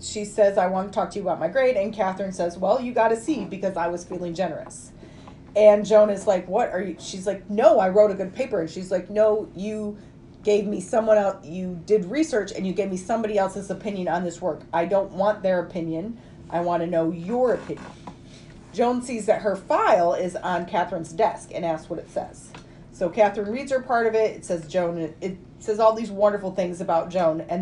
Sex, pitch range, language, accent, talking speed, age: female, 175-215 Hz, English, American, 225 wpm, 30-49